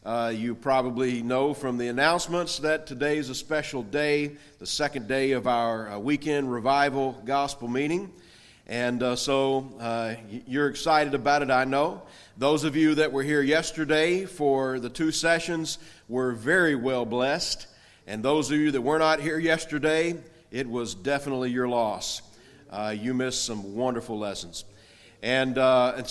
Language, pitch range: English, 125-155 Hz